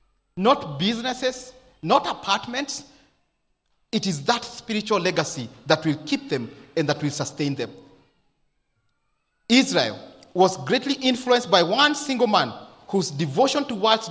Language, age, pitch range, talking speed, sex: English, 40-59, 165-240 Hz, 125 wpm, male